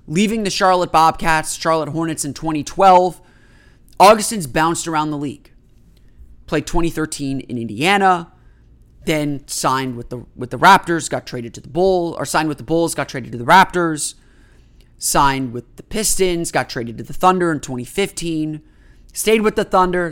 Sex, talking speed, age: male, 160 wpm, 30-49